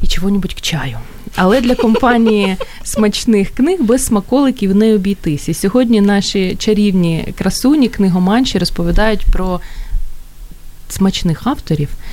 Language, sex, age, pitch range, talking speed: Ukrainian, female, 20-39, 160-215 Hz, 115 wpm